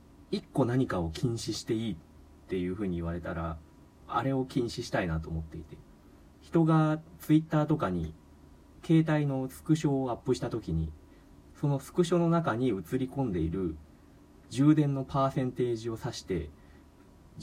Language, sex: Japanese, male